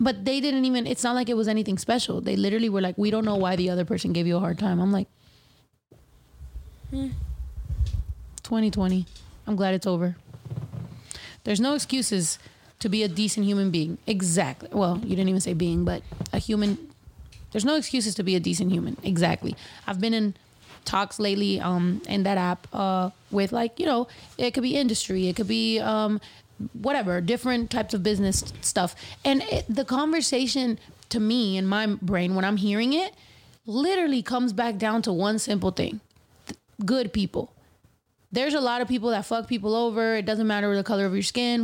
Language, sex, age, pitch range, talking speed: English, female, 30-49, 190-240 Hz, 190 wpm